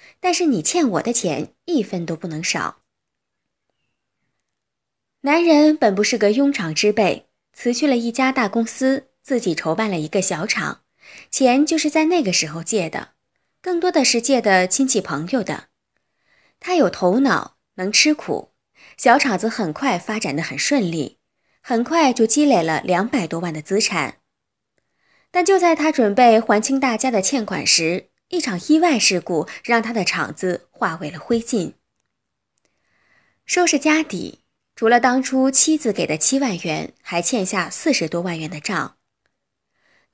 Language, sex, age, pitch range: Chinese, female, 20-39, 180-280 Hz